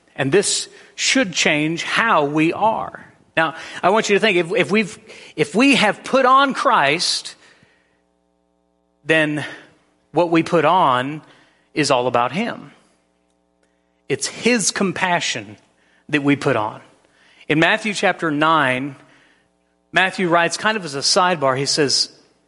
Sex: male